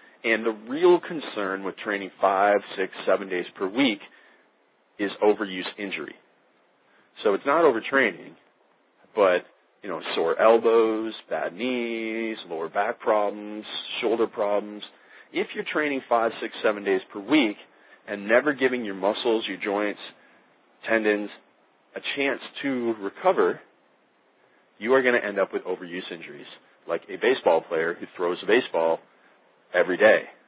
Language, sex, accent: English, male, American